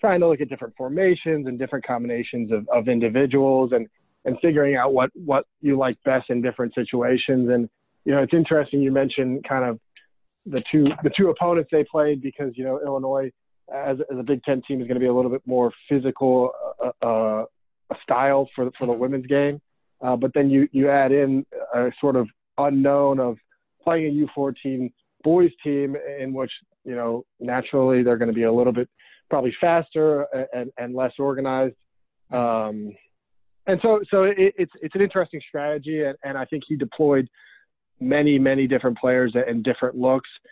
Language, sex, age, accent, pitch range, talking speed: English, male, 30-49, American, 125-145 Hz, 185 wpm